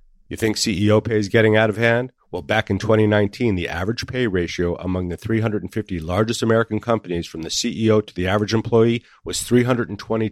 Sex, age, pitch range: male, 50-69, 95-115 Hz